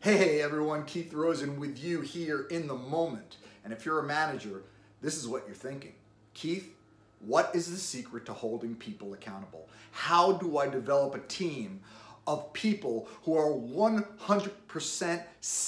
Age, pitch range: 30-49, 145-225 Hz